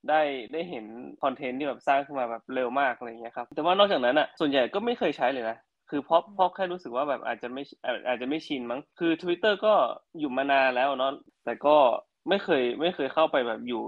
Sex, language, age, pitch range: male, Thai, 20-39, 120-150 Hz